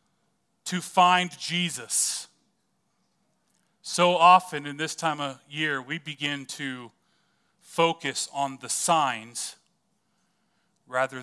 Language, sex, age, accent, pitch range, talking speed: English, male, 30-49, American, 145-180 Hz, 95 wpm